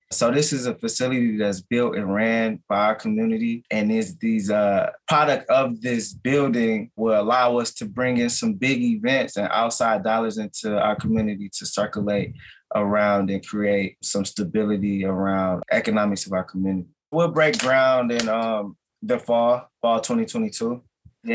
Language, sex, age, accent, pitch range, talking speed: English, male, 20-39, American, 105-125 Hz, 155 wpm